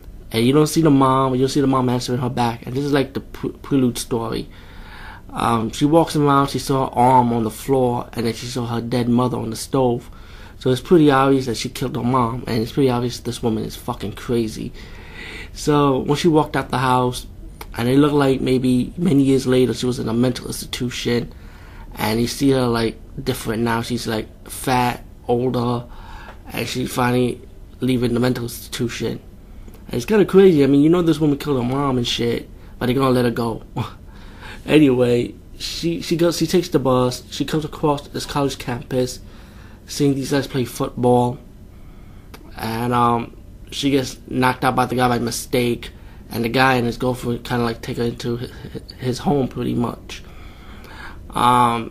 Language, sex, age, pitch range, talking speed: English, male, 20-39, 115-135 Hz, 195 wpm